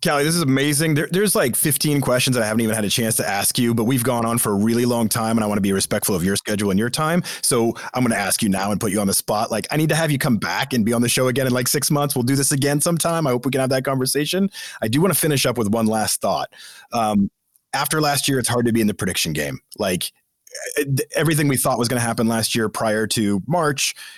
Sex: male